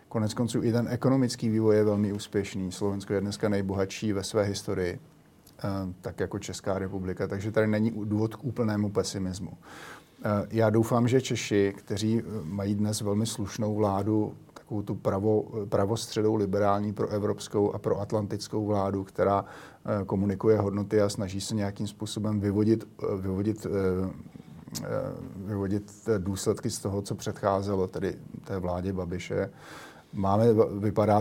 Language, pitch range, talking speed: Slovak, 100-110 Hz, 130 wpm